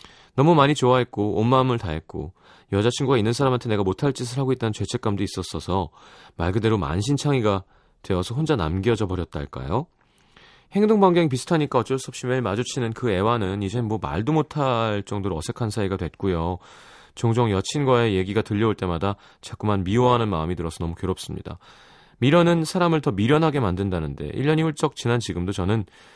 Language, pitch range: Korean, 100-140 Hz